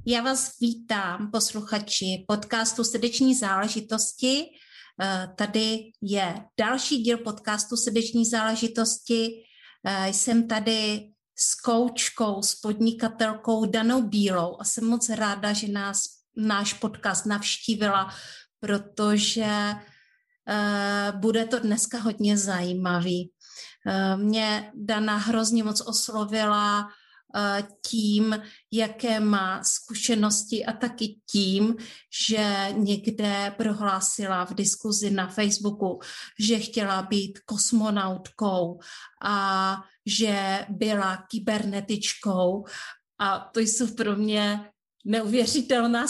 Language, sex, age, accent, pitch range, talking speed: Czech, female, 30-49, native, 205-230 Hz, 90 wpm